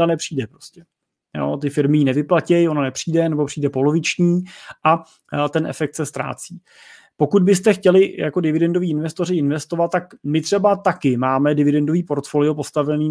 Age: 30-49